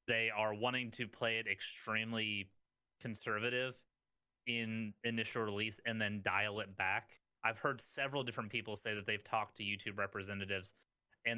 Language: English